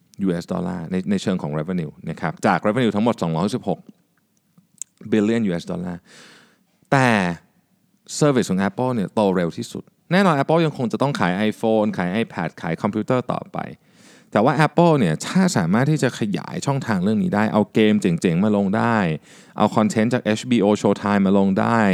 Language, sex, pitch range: Thai, male, 100-150 Hz